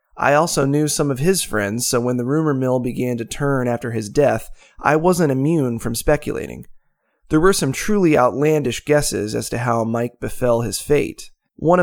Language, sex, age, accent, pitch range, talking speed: English, male, 30-49, American, 115-150 Hz, 190 wpm